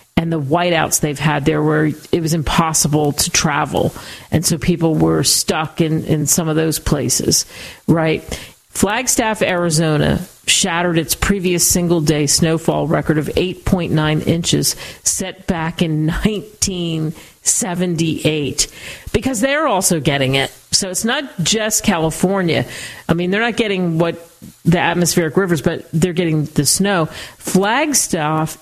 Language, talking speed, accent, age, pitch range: English, 135 wpm, American, 50-69, 155-180 Hz